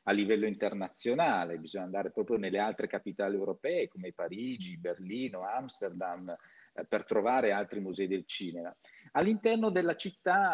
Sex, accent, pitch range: male, native, 100-160 Hz